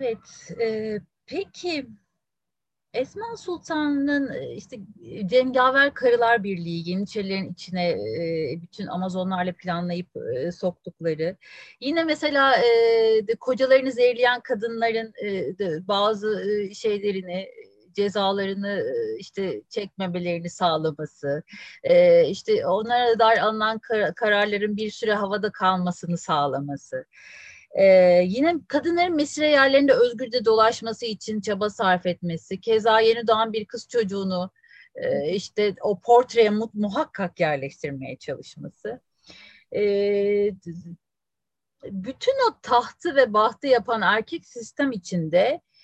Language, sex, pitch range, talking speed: Turkish, female, 190-315 Hz, 105 wpm